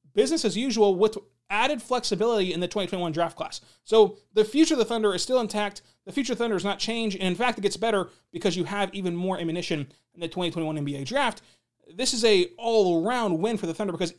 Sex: male